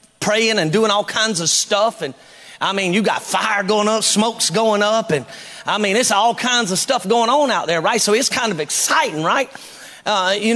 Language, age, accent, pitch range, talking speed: English, 40-59, American, 210-265 Hz, 220 wpm